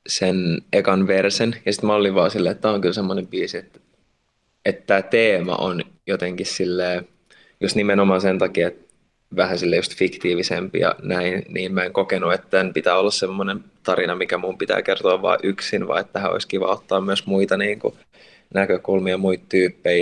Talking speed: 180 wpm